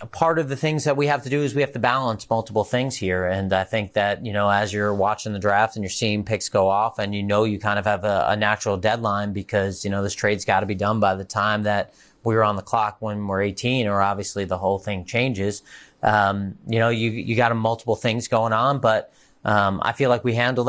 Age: 30-49